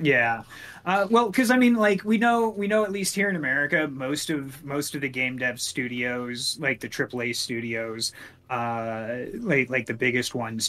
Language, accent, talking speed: English, American, 190 wpm